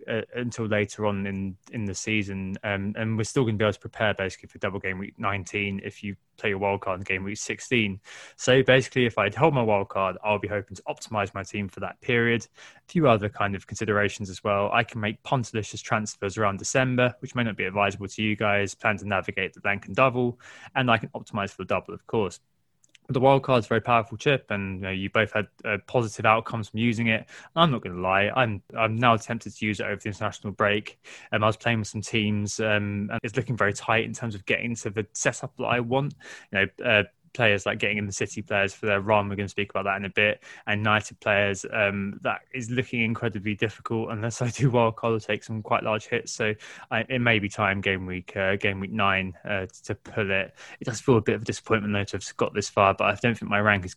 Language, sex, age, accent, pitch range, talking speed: English, male, 20-39, British, 100-115 Hz, 250 wpm